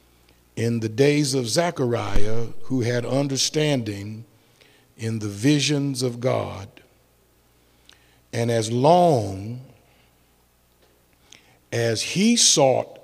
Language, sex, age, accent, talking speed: English, male, 60-79, American, 85 wpm